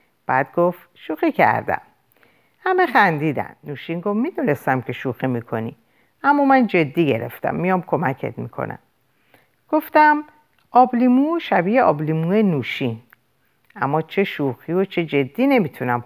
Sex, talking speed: female, 120 wpm